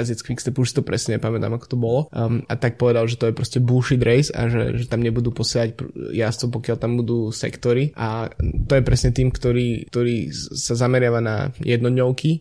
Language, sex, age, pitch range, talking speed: Slovak, male, 20-39, 115-125 Hz, 210 wpm